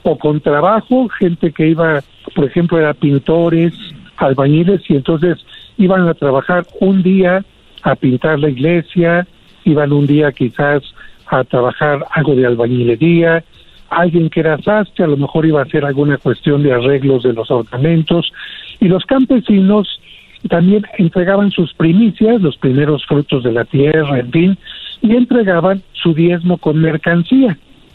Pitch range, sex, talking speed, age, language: 145-185 Hz, male, 150 wpm, 60-79, Spanish